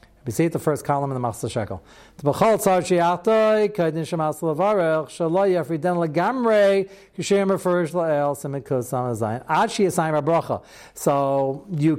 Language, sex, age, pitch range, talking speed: English, male, 60-79, 155-235 Hz, 65 wpm